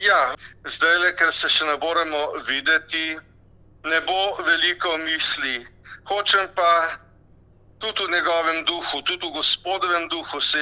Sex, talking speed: male, 125 wpm